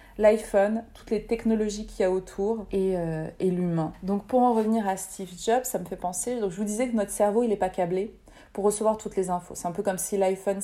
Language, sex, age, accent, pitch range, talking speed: French, female, 30-49, French, 185-215 Hz, 255 wpm